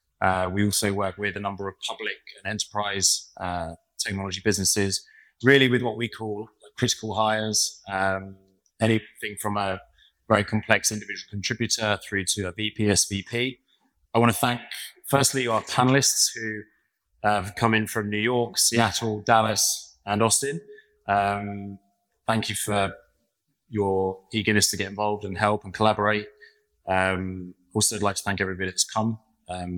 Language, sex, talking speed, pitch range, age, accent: English, male, 150 wpm, 100-115 Hz, 20-39, British